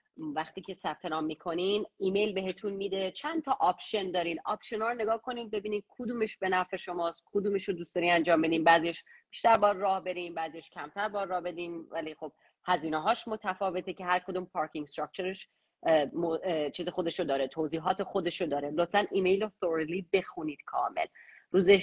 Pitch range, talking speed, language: 160-200 Hz, 160 wpm, Persian